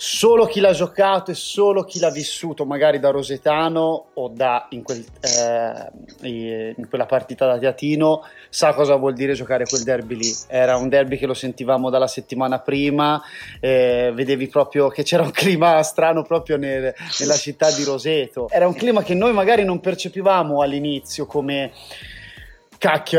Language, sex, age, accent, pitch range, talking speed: Italian, male, 30-49, native, 130-160 Hz, 160 wpm